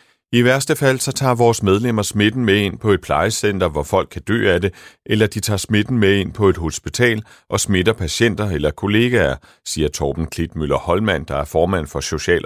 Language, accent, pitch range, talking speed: Danish, native, 75-105 Hz, 195 wpm